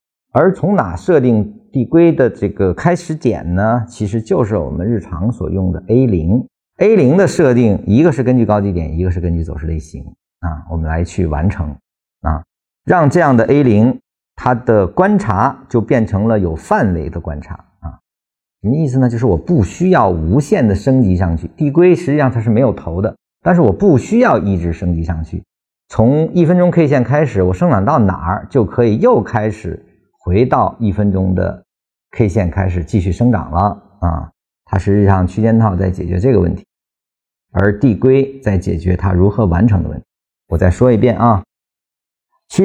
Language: Chinese